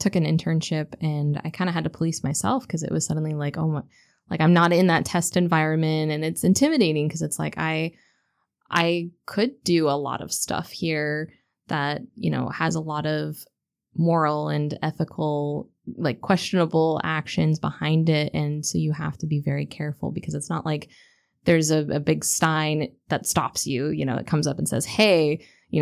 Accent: American